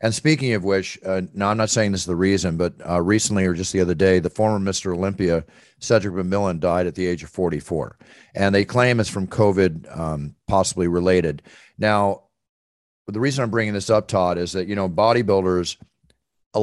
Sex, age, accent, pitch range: male, 40-59, American, 90-110 Hz